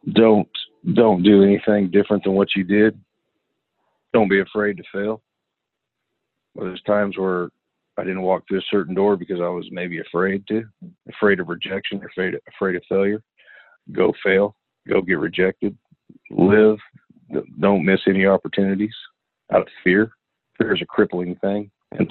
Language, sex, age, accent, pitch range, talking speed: English, male, 50-69, American, 90-100 Hz, 160 wpm